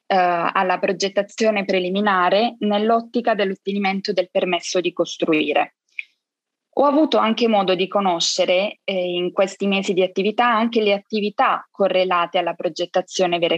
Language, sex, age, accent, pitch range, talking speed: Italian, female, 20-39, native, 185-225 Hz, 125 wpm